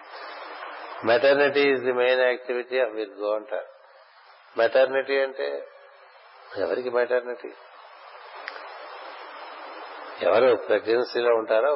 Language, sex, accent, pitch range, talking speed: Telugu, male, native, 115-135 Hz, 80 wpm